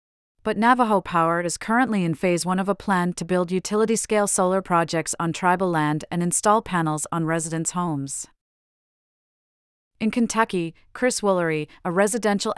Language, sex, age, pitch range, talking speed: English, female, 40-59, 160-200 Hz, 150 wpm